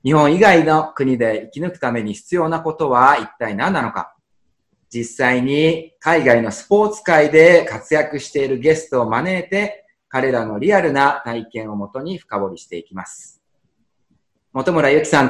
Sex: male